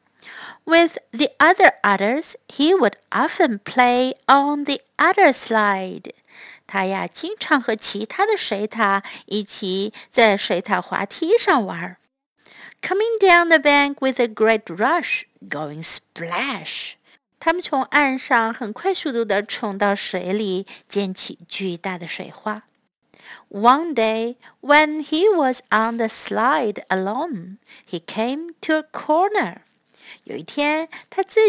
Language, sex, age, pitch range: Chinese, female, 50-69, 220-355 Hz